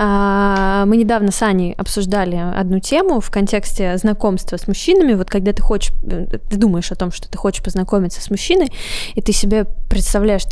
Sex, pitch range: female, 190-225 Hz